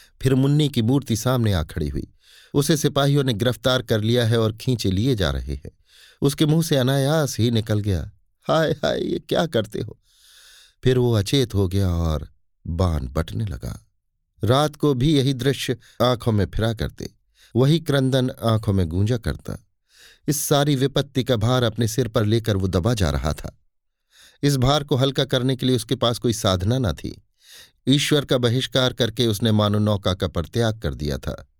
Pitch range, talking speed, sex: 95-130 Hz, 185 wpm, male